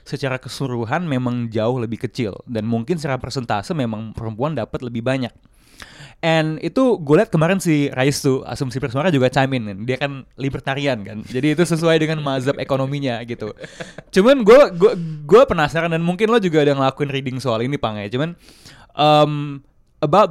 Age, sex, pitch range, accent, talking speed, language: 20-39, male, 130-165 Hz, native, 170 wpm, Indonesian